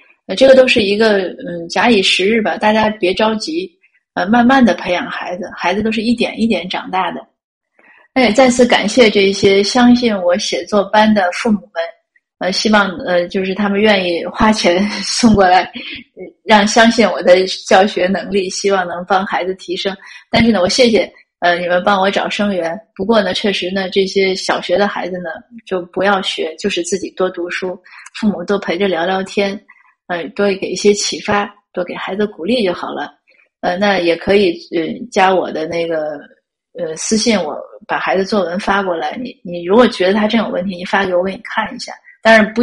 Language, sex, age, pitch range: Chinese, female, 30-49, 180-225 Hz